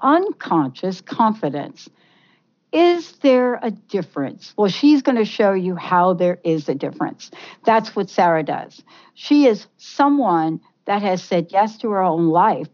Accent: American